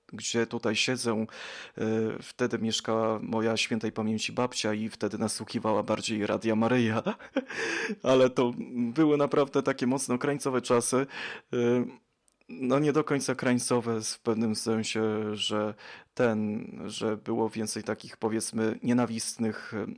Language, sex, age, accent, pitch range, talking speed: Polish, male, 20-39, native, 110-125 Hz, 115 wpm